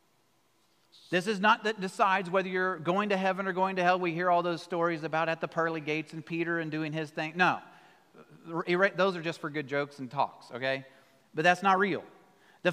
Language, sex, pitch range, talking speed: English, male, 170-215 Hz, 210 wpm